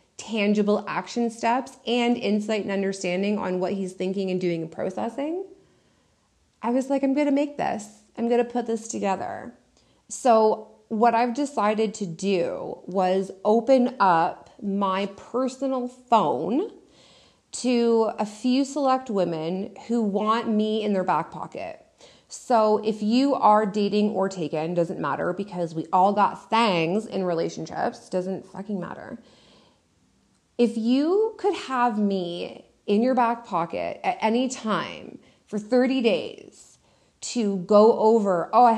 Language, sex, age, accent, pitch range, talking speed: English, female, 30-49, American, 190-235 Hz, 140 wpm